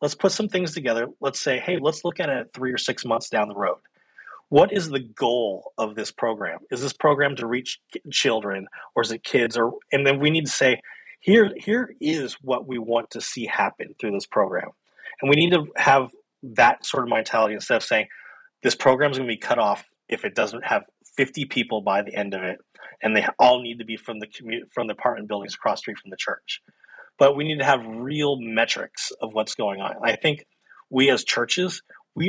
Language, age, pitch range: English, 30-49, 115-150 Hz